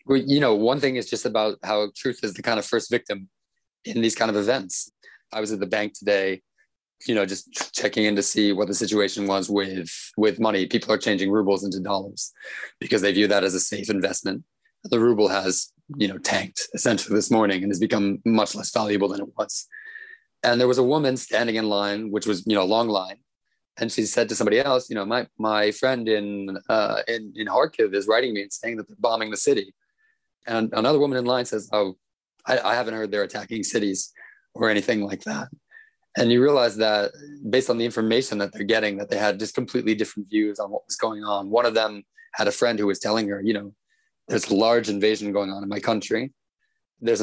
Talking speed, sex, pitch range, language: 225 wpm, male, 100-120 Hz, English